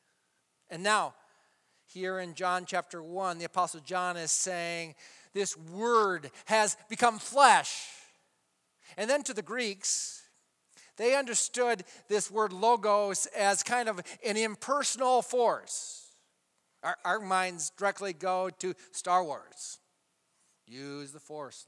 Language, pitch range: English, 175-250 Hz